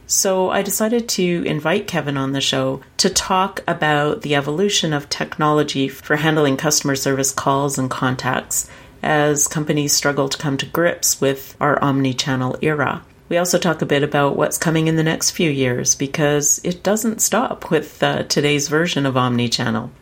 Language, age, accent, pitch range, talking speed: English, 40-59, American, 135-165 Hz, 170 wpm